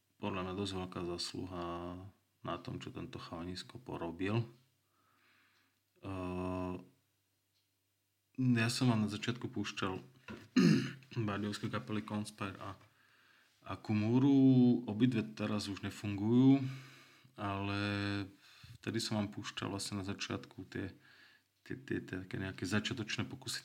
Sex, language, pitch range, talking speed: male, Slovak, 95-115 Hz, 110 wpm